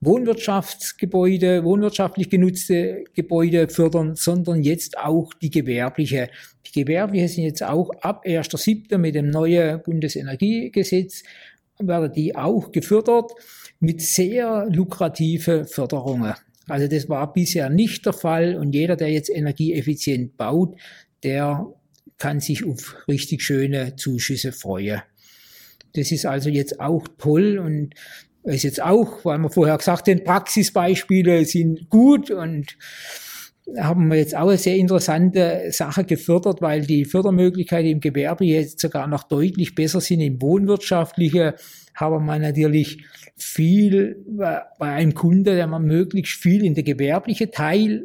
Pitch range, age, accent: 150-185 Hz, 50-69, German